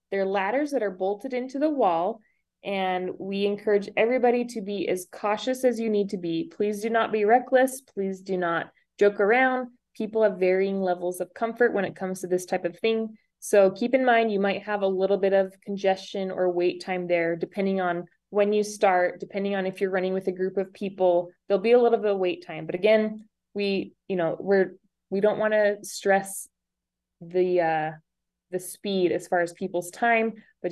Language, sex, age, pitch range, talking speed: English, female, 20-39, 180-210 Hz, 205 wpm